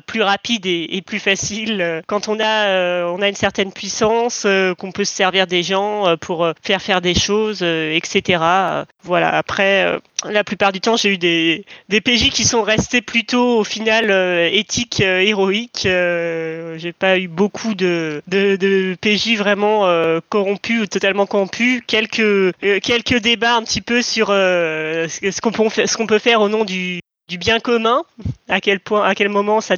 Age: 20-39